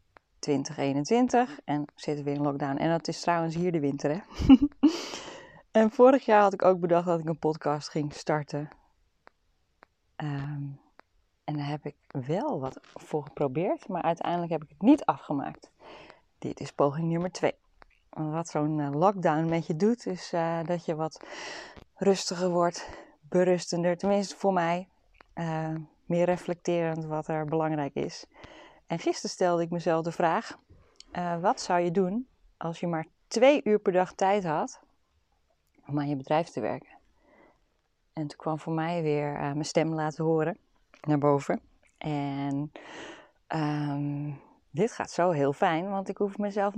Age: 20-39